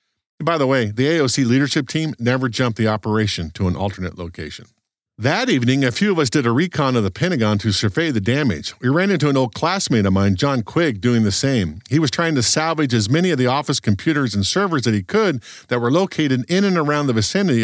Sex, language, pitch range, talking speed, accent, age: male, English, 115-165 Hz, 230 wpm, American, 50-69